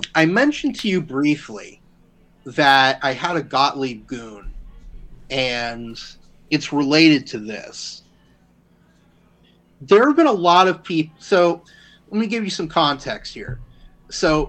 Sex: male